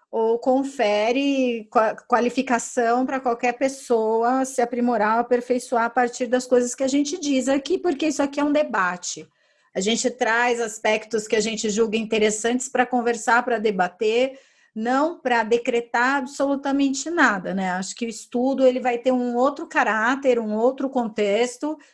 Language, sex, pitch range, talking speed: Portuguese, female, 225-270 Hz, 150 wpm